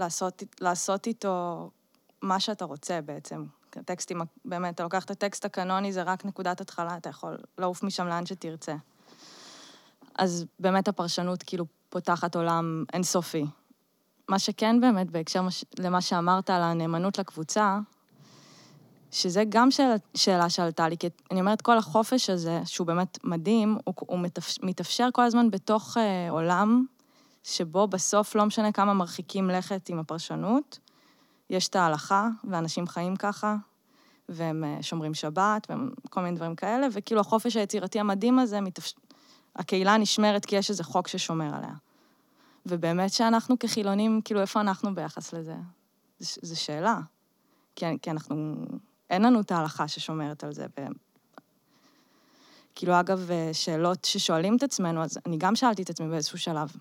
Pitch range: 170-215 Hz